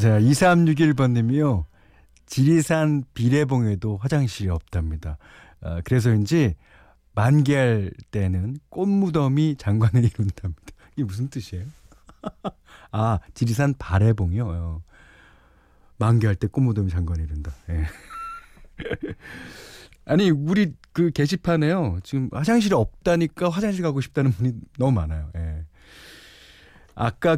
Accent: native